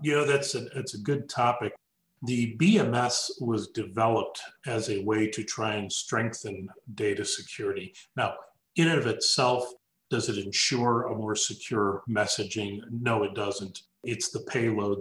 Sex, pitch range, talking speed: male, 100-125 Hz, 150 wpm